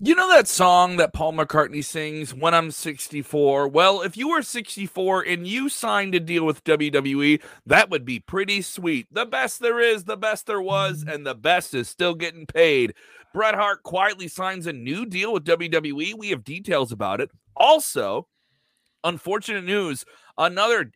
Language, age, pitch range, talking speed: English, 40-59, 150-205 Hz, 175 wpm